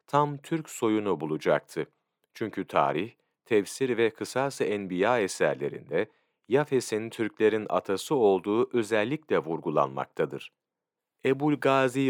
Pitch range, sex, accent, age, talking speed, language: 105-140 Hz, male, native, 40-59, 95 wpm, Turkish